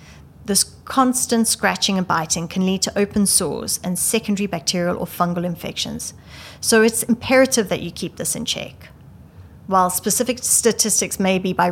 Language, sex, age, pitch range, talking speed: English, female, 30-49, 180-210 Hz, 160 wpm